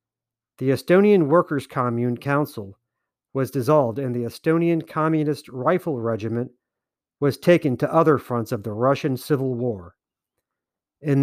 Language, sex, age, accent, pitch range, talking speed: English, male, 50-69, American, 125-160 Hz, 130 wpm